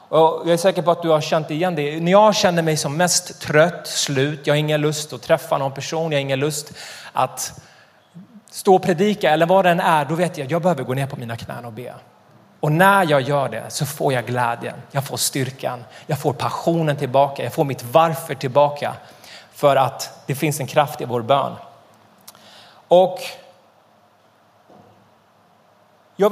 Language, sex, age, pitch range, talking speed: Swedish, male, 30-49, 140-180 Hz, 190 wpm